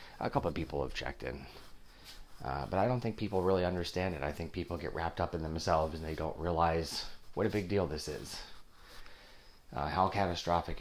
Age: 30-49